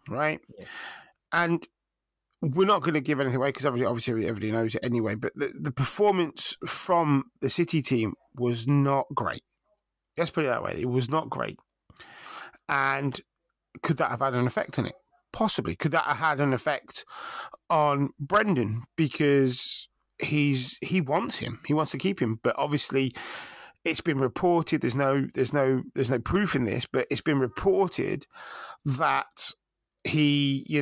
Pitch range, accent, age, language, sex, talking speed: 130-155 Hz, British, 30-49, English, male, 165 wpm